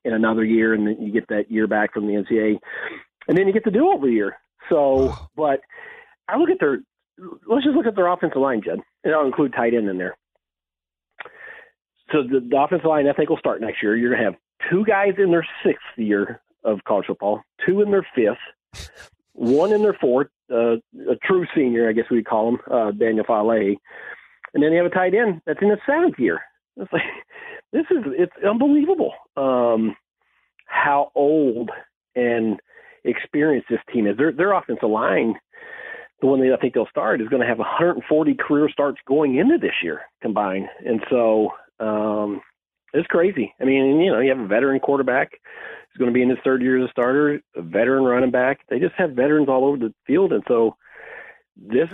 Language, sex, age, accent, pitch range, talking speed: English, male, 40-59, American, 115-180 Hz, 205 wpm